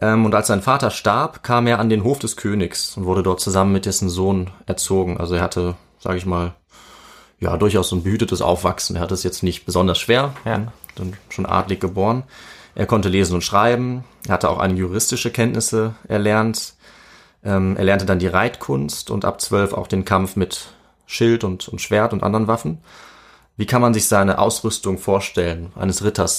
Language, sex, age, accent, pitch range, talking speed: German, male, 20-39, German, 90-110 Hz, 185 wpm